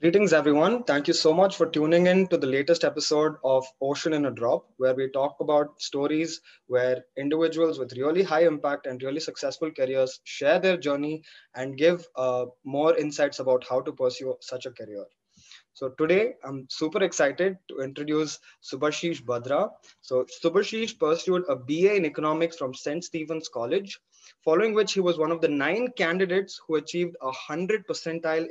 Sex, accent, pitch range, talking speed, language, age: male, Indian, 145-185 Hz, 175 wpm, English, 20-39